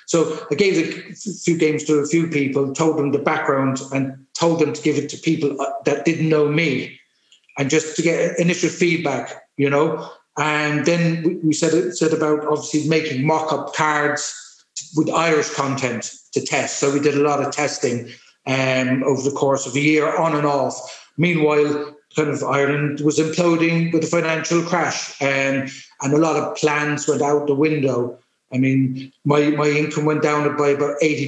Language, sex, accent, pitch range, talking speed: English, male, British, 140-160 Hz, 185 wpm